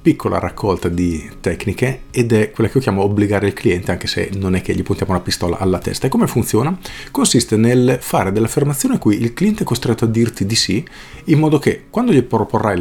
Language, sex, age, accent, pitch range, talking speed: Italian, male, 40-59, native, 100-130 Hz, 215 wpm